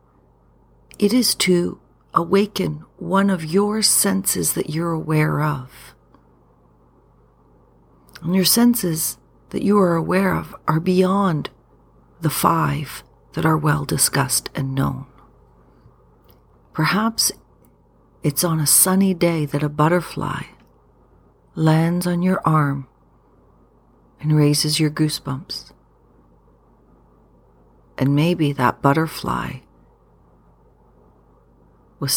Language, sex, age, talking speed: English, female, 40-59, 95 wpm